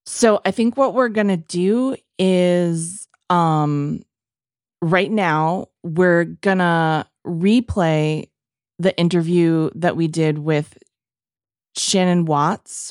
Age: 30-49